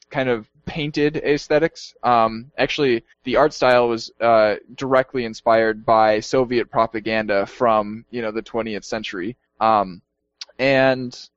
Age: 10-29